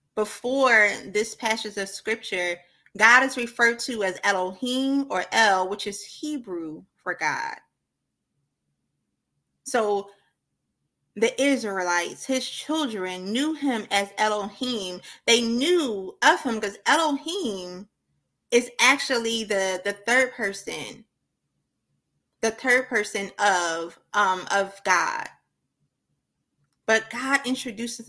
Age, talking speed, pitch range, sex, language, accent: 20-39, 105 wpm, 200-260 Hz, female, English, American